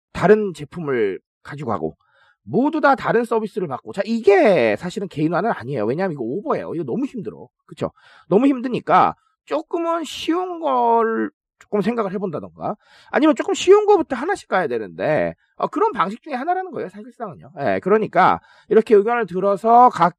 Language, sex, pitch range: Korean, male, 175-255 Hz